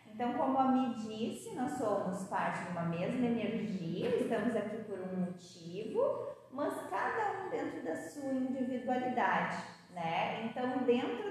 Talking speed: 145 wpm